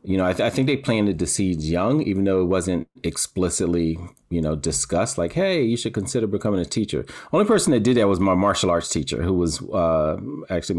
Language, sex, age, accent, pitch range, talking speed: English, male, 40-59, American, 80-90 Hz, 230 wpm